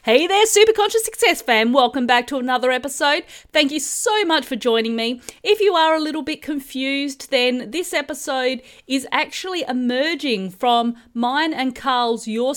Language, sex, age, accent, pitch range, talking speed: English, female, 30-49, Australian, 215-275 Hz, 165 wpm